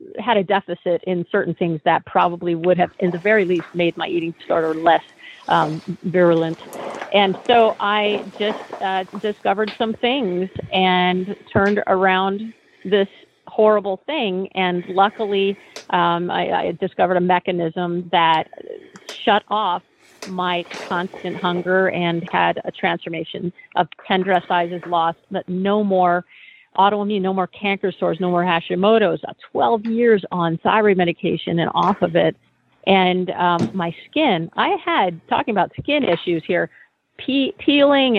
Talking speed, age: 140 wpm, 40-59